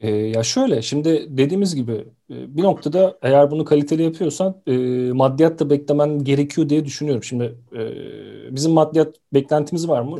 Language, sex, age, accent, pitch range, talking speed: Turkish, male, 40-59, native, 125-155 Hz, 135 wpm